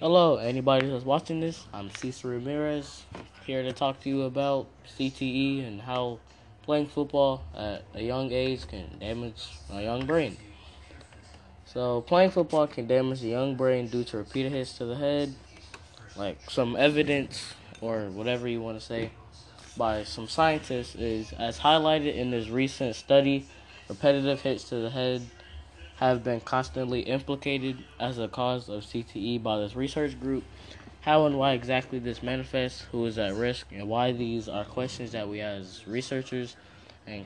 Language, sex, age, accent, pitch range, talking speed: English, male, 10-29, American, 105-130 Hz, 160 wpm